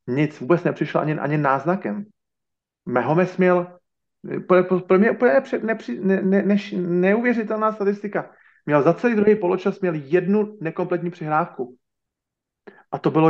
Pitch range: 130-180 Hz